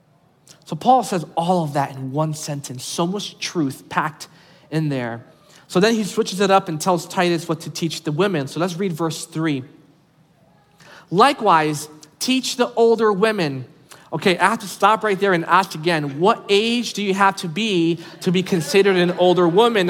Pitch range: 155-205 Hz